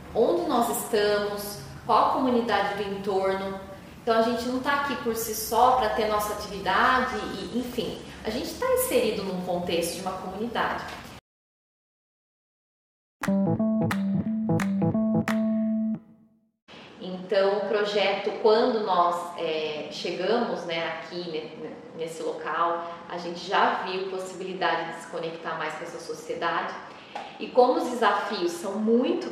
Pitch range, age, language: 175-230 Hz, 20-39, Portuguese